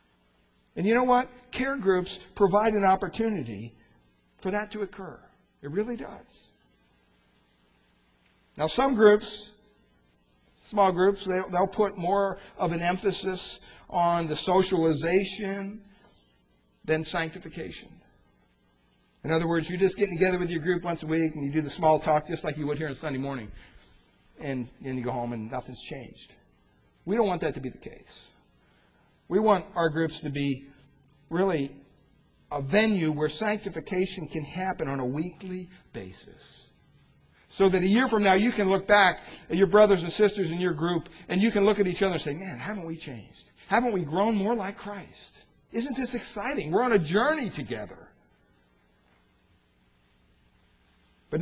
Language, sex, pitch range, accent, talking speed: English, male, 125-195 Hz, American, 160 wpm